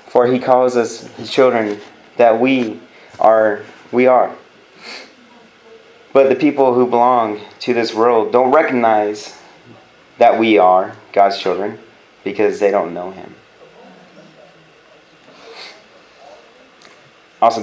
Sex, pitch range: male, 110-130 Hz